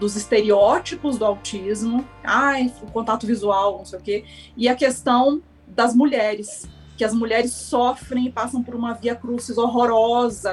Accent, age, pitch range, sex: Brazilian, 30-49, 205-245 Hz, female